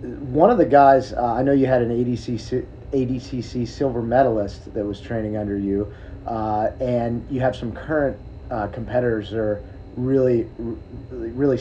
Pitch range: 115-140 Hz